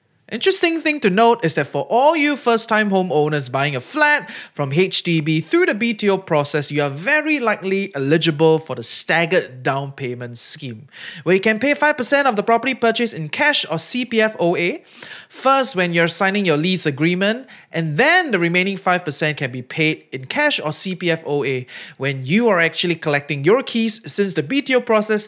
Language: English